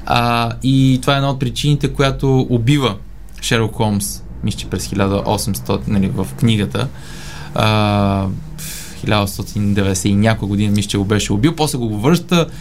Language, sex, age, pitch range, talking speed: Bulgarian, male, 20-39, 105-150 Hz, 150 wpm